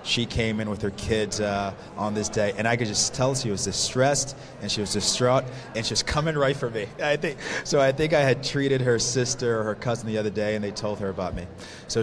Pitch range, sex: 105-125 Hz, male